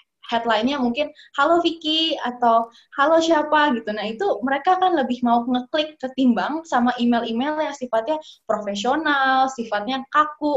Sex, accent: female, native